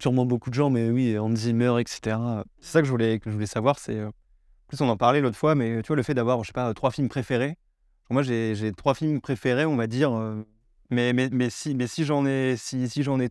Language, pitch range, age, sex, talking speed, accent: French, 115-135 Hz, 20-39, male, 270 wpm, French